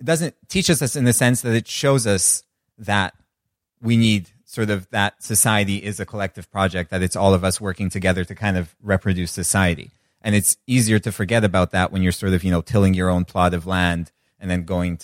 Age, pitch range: 30-49, 90-105 Hz